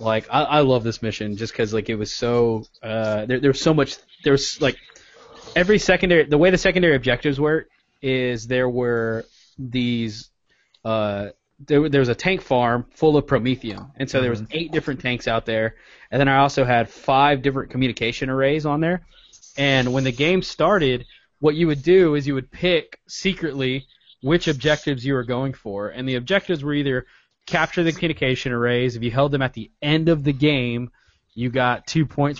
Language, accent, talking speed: English, American, 195 wpm